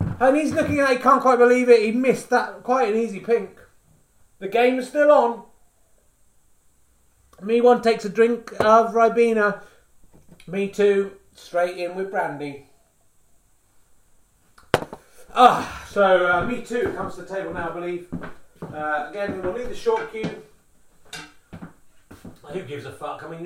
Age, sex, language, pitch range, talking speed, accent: 30-49, male, English, 190-255 Hz, 155 wpm, British